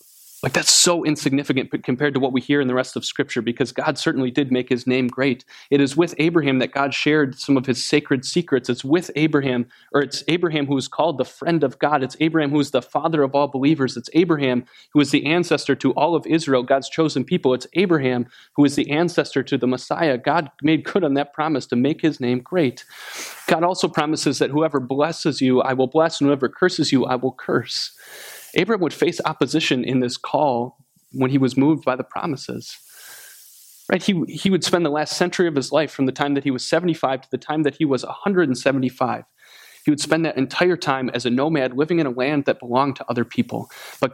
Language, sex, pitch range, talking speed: English, male, 130-160 Hz, 225 wpm